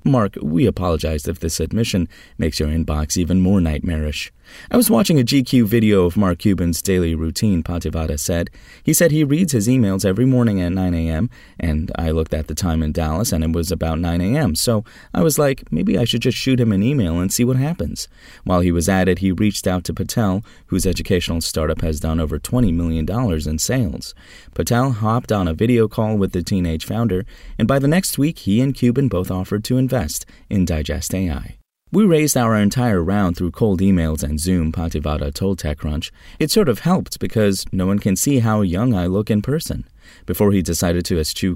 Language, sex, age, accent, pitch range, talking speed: English, male, 30-49, American, 85-120 Hz, 210 wpm